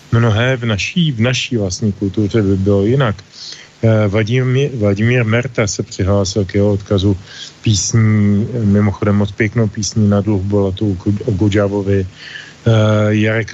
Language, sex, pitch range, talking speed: Slovak, male, 105-120 Hz, 130 wpm